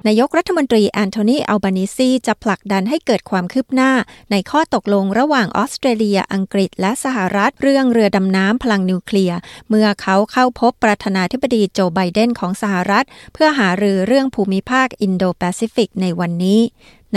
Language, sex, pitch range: Thai, female, 195-235 Hz